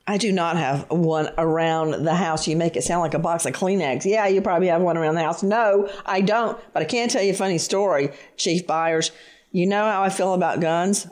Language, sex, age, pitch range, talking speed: English, female, 40-59, 175-245 Hz, 245 wpm